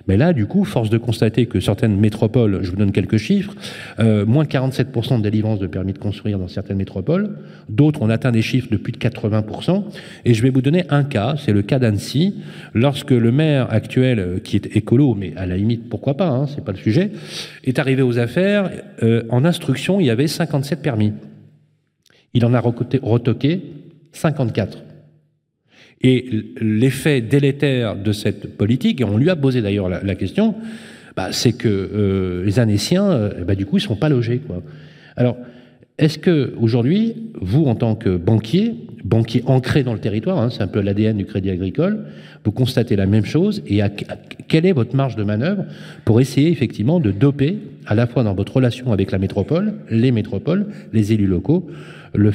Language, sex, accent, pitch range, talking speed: French, male, French, 105-150 Hz, 195 wpm